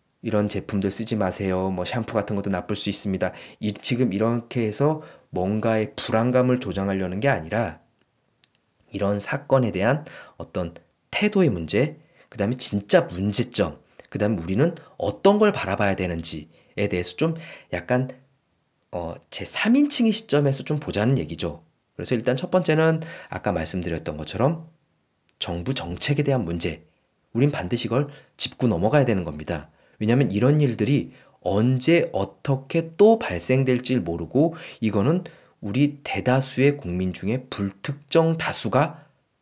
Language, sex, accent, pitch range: Korean, male, native, 100-155 Hz